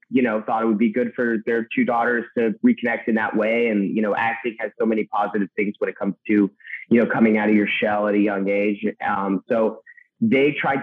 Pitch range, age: 105-140 Hz, 30-49